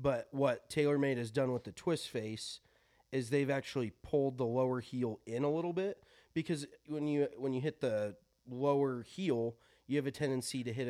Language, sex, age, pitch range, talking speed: English, male, 20-39, 115-135 Hz, 195 wpm